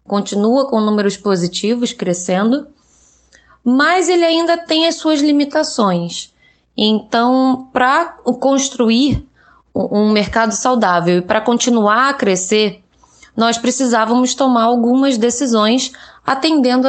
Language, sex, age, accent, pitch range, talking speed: Portuguese, female, 20-39, Brazilian, 180-245 Hz, 105 wpm